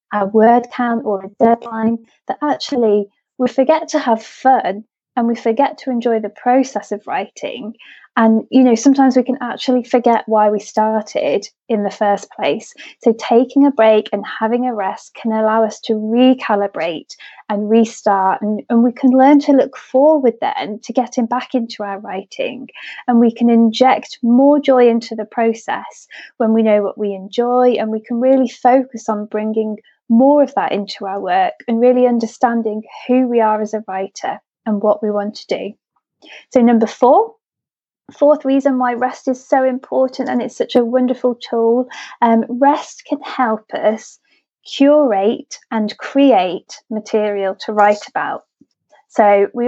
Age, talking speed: 20-39, 170 wpm